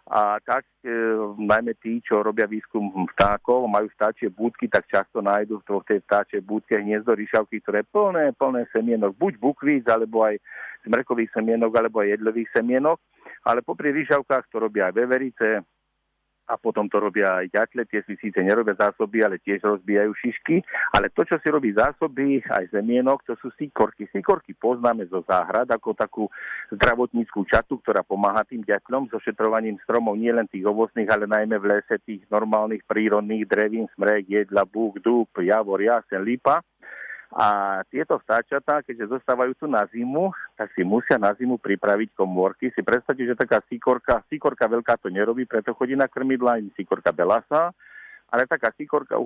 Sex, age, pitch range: male, 50-69, 105-130 Hz